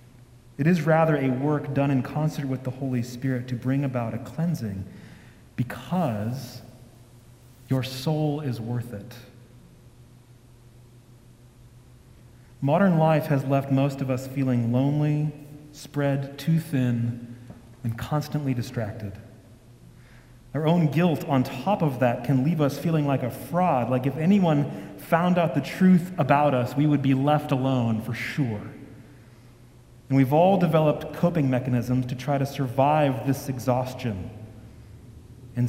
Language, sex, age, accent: English, male, 40-59, American